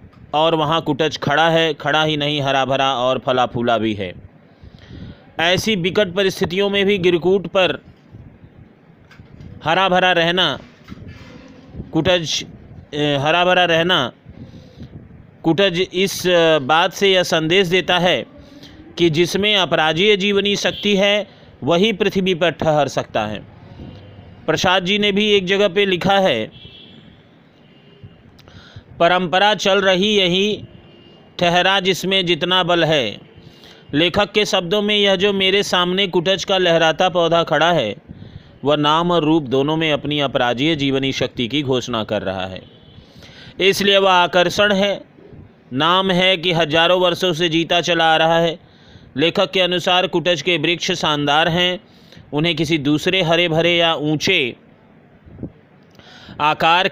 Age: 30-49